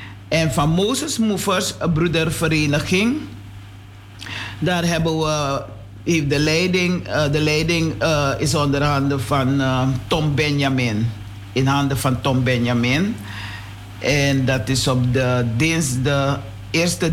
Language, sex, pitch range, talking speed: Dutch, male, 115-155 Hz, 115 wpm